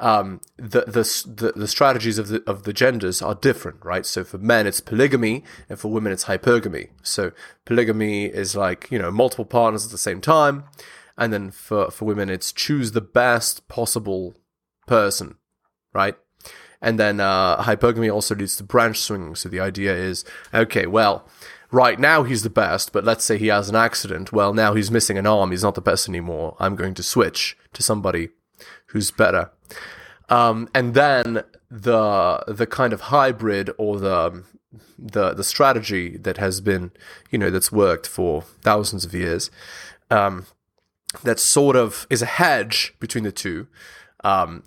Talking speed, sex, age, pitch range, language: 175 wpm, male, 20-39, 100-115 Hz, English